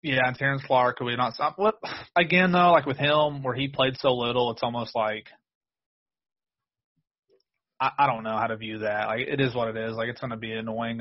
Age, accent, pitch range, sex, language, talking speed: 30-49, American, 115-145 Hz, male, English, 230 wpm